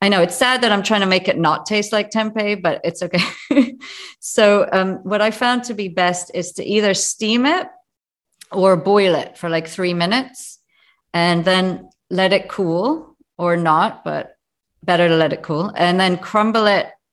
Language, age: English, 40-59